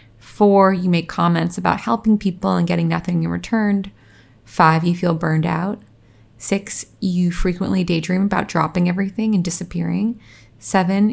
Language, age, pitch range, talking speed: English, 20-39, 165-195 Hz, 145 wpm